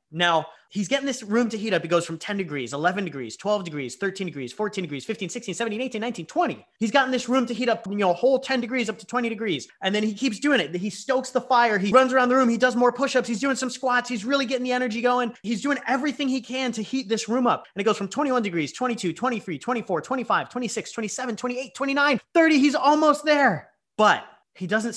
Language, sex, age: English, male, 30-49